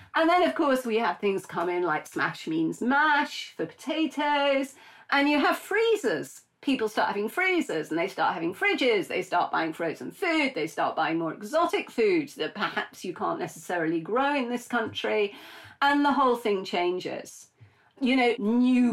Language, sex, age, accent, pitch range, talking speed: English, female, 40-59, British, 215-295 Hz, 180 wpm